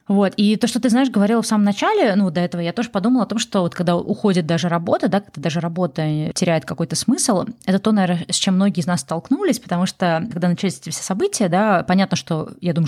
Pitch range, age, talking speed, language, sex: 170-205 Hz, 20-39, 240 wpm, Russian, female